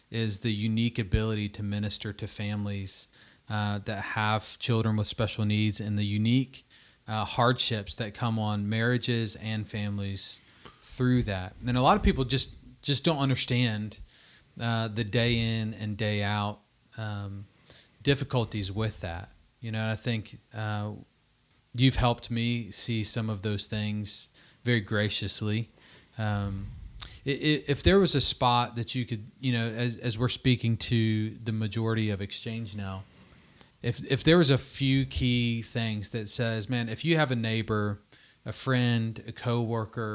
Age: 30-49